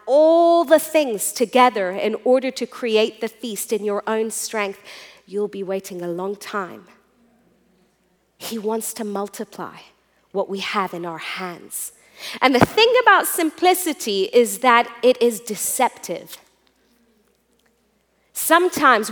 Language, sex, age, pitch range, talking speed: English, female, 30-49, 220-295 Hz, 130 wpm